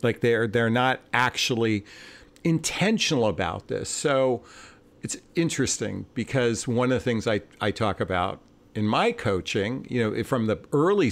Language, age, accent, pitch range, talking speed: English, 50-69, American, 105-145 Hz, 150 wpm